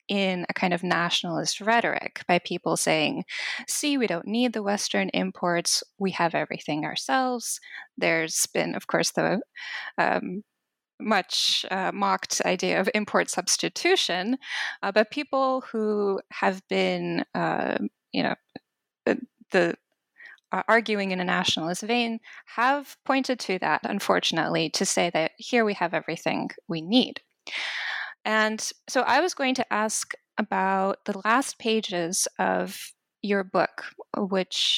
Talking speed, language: 130 wpm, English